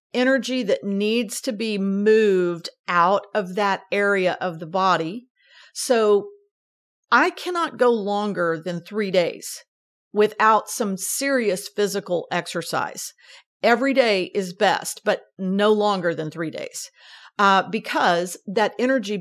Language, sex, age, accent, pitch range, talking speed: English, female, 50-69, American, 185-250 Hz, 125 wpm